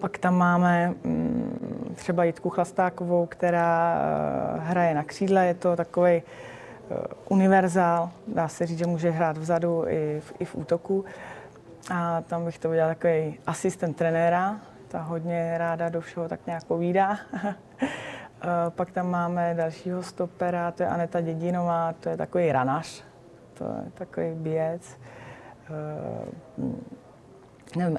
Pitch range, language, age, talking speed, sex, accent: 160-180 Hz, Czech, 20-39, 130 wpm, female, native